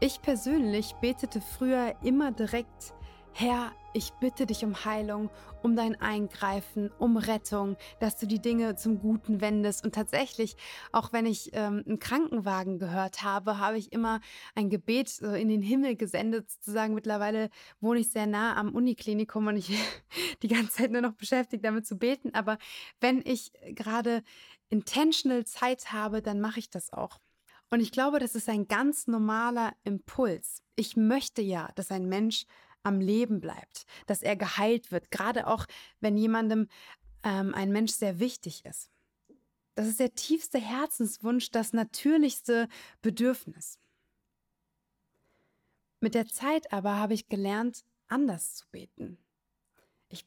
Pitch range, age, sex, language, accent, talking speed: 210-245 Hz, 20-39, female, German, German, 150 wpm